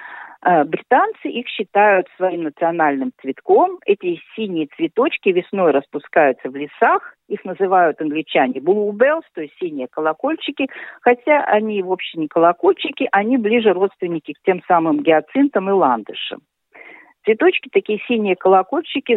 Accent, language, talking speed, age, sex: native, Russian, 120 wpm, 50-69, female